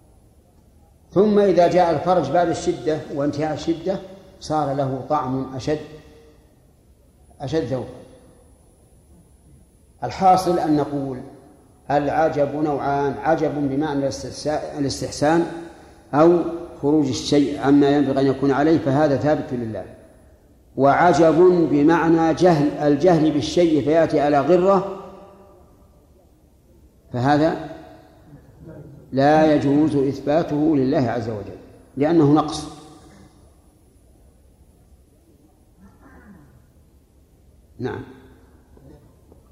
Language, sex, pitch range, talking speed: Arabic, male, 130-155 Hz, 75 wpm